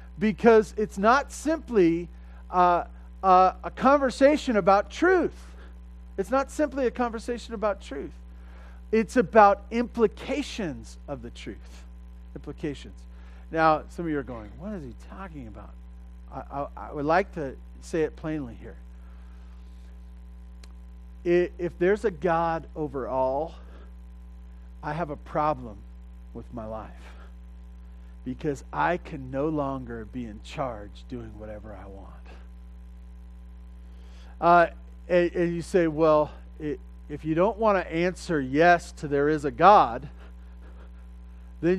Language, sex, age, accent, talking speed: English, male, 40-59, American, 130 wpm